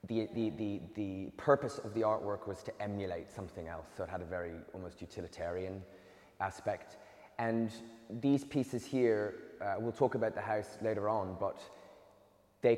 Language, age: English, 20-39